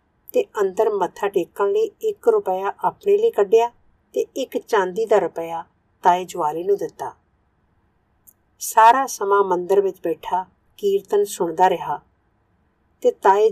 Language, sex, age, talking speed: Punjabi, female, 50-69, 130 wpm